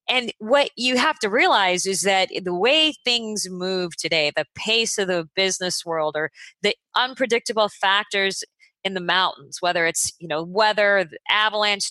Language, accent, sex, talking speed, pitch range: English, American, female, 160 wpm, 185-240 Hz